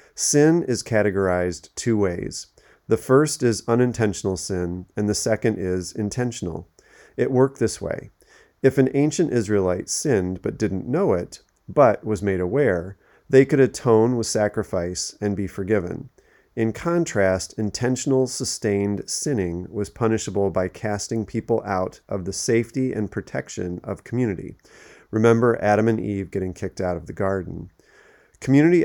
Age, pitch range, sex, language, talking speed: 40-59, 95-120 Hz, male, English, 145 wpm